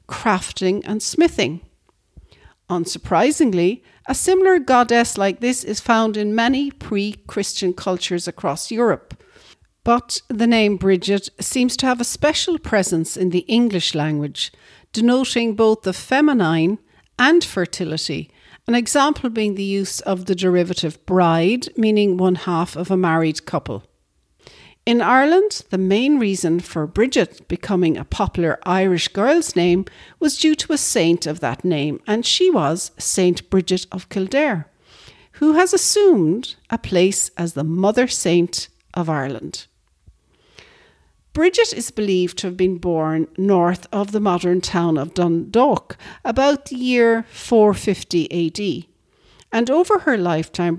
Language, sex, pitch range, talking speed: English, female, 175-245 Hz, 135 wpm